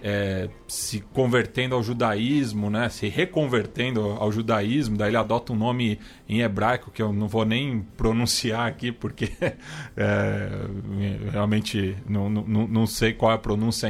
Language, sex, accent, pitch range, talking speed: Portuguese, male, Brazilian, 105-130 Hz, 150 wpm